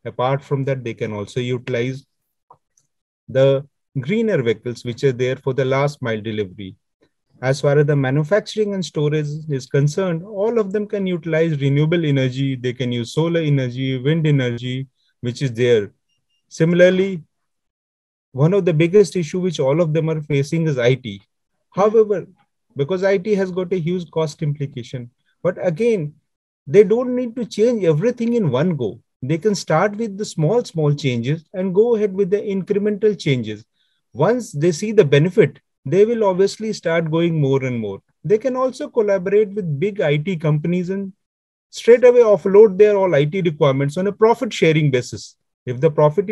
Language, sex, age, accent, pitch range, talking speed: Italian, male, 30-49, Indian, 135-200 Hz, 170 wpm